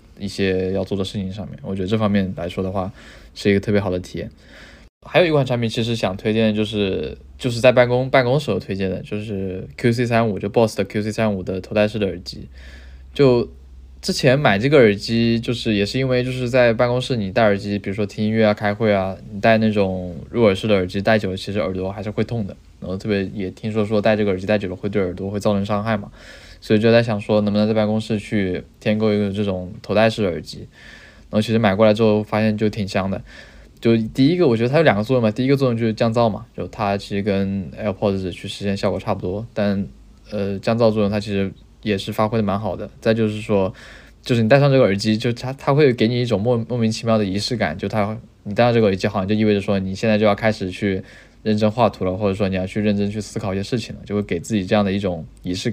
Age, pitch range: 20-39, 100-115 Hz